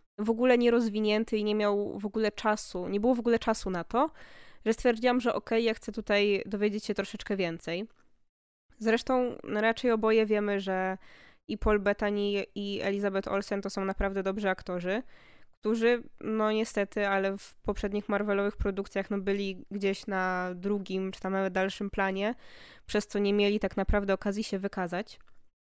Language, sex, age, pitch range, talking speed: Polish, female, 20-39, 195-220 Hz, 165 wpm